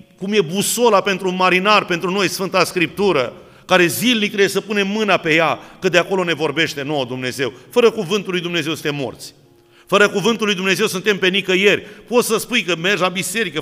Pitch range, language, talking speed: 165-210 Hz, Romanian, 200 wpm